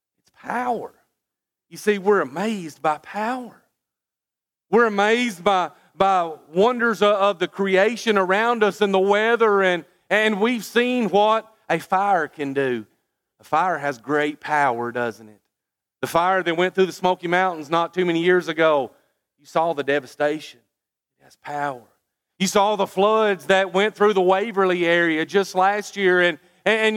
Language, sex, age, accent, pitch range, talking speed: English, male, 40-59, American, 145-195 Hz, 160 wpm